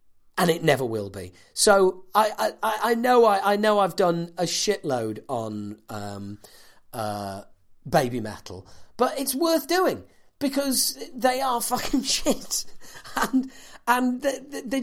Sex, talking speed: male, 140 wpm